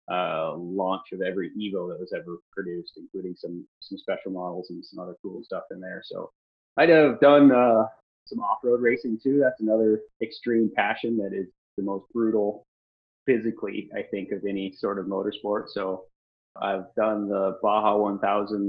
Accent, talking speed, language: American, 170 wpm, English